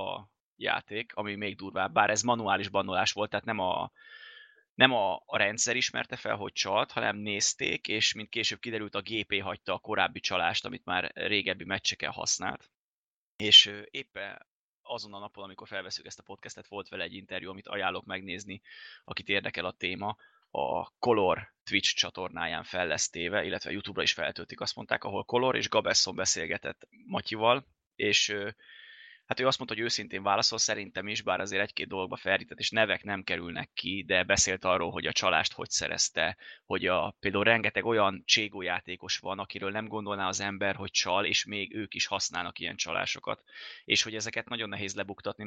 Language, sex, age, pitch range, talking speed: Hungarian, male, 20-39, 100-115 Hz, 175 wpm